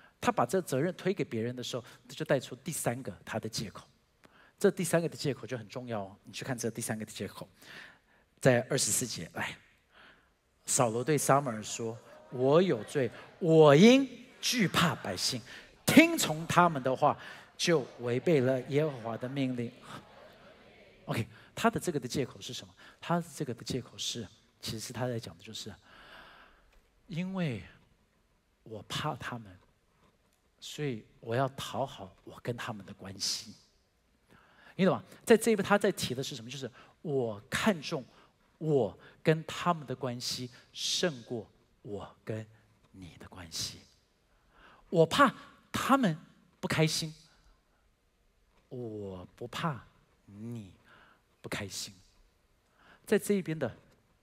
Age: 50-69